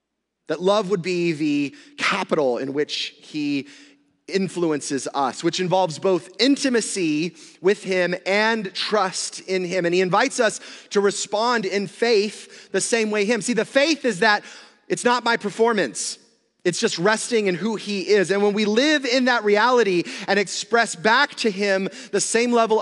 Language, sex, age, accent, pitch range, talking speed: English, male, 30-49, American, 155-220 Hz, 170 wpm